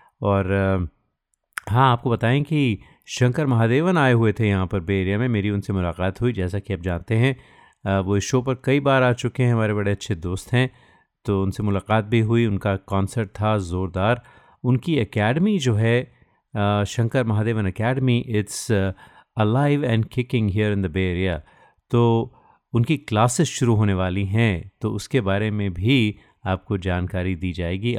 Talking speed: 165 wpm